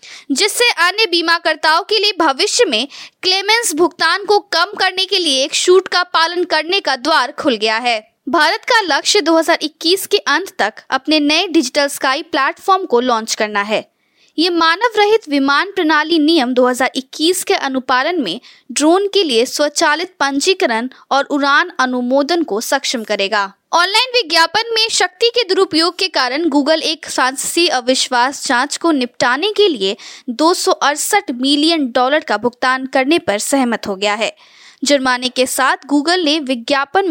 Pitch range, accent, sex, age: 260-360 Hz, native, female, 20-39